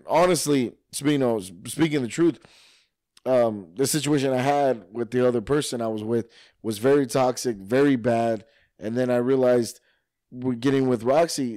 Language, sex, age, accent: English, male, 20-39, American